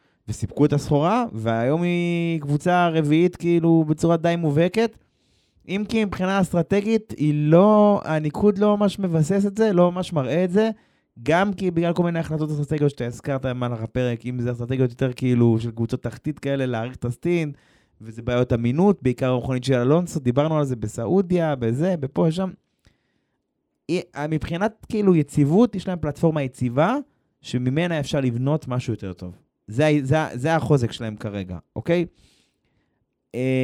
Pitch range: 125-175 Hz